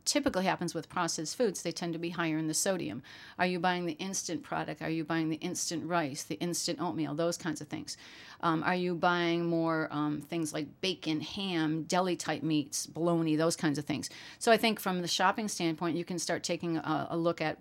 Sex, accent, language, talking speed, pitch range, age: female, American, English, 220 wpm, 160-185 Hz, 40-59